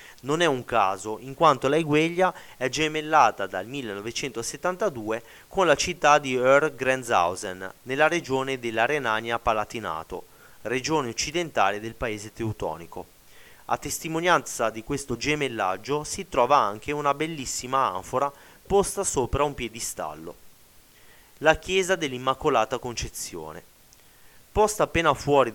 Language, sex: Italian, male